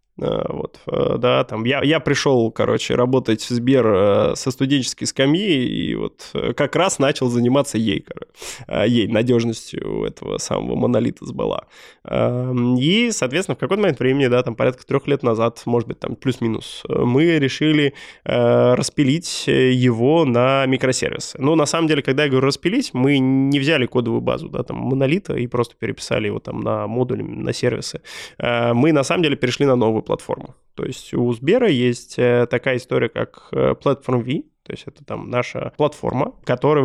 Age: 20-39